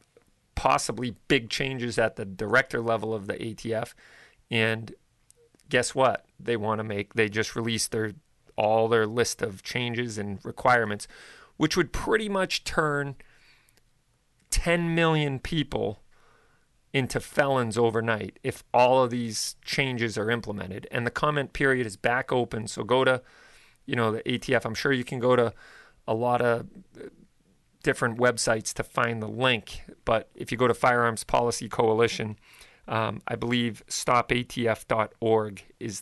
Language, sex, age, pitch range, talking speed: English, male, 40-59, 110-125 Hz, 145 wpm